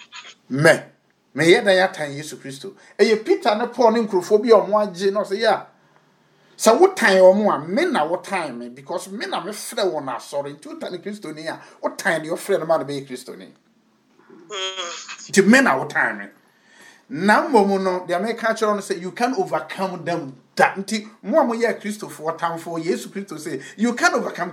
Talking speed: 210 wpm